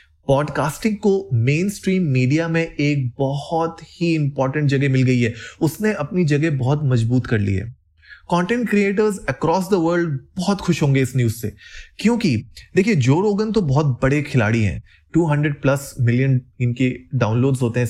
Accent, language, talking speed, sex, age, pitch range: native, Hindi, 160 wpm, male, 20-39, 130-180 Hz